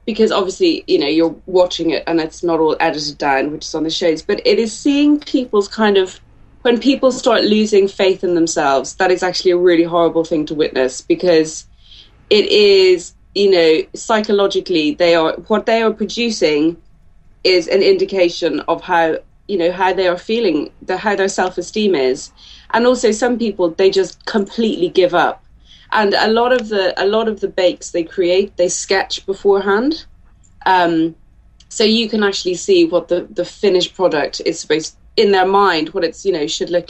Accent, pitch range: British, 170-225 Hz